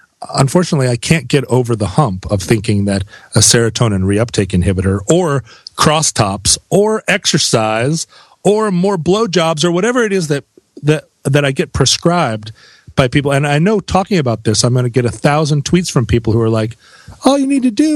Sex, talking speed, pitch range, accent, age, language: male, 185 wpm, 110-170 Hz, American, 40-59, English